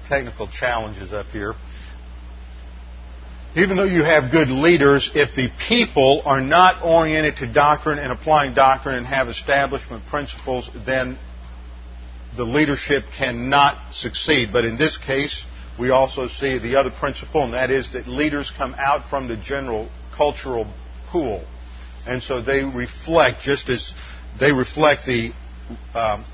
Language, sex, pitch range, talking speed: English, male, 105-145 Hz, 140 wpm